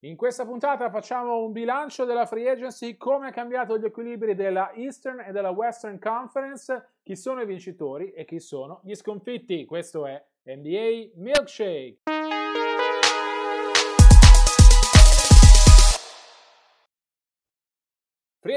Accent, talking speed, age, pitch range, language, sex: native, 110 wpm, 30-49, 170-230 Hz, Italian, male